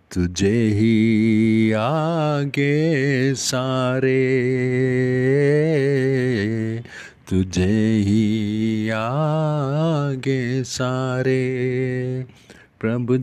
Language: Hindi